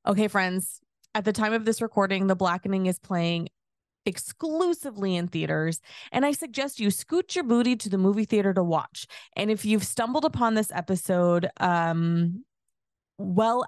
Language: English